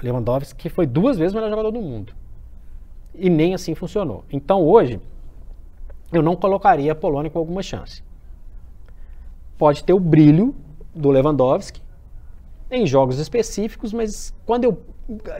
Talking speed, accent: 145 wpm, Brazilian